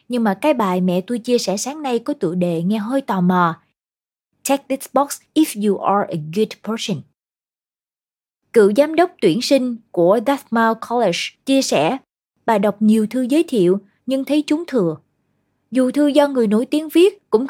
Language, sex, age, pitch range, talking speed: Vietnamese, female, 20-39, 200-275 Hz, 185 wpm